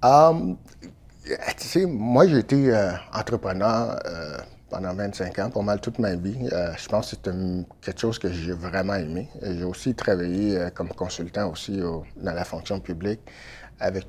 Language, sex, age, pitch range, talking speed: French, male, 60-79, 90-110 Hz, 180 wpm